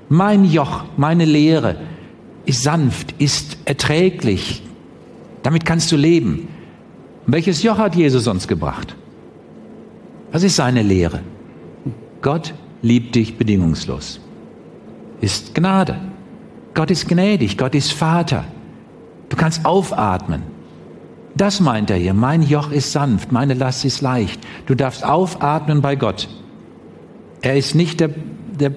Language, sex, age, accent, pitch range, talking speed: German, male, 50-69, German, 115-160 Hz, 125 wpm